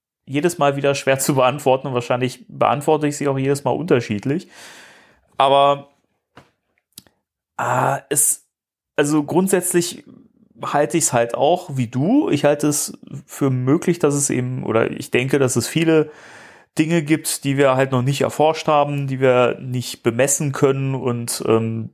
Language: German